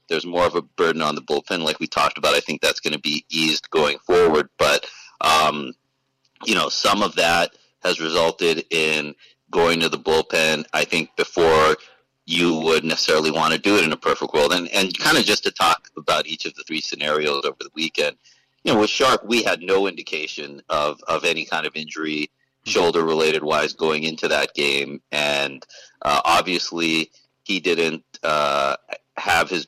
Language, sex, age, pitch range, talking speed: English, male, 40-59, 80-90 Hz, 185 wpm